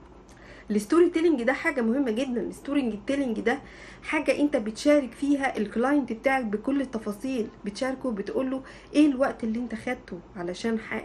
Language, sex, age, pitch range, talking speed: Arabic, female, 50-69, 220-285 Hz, 140 wpm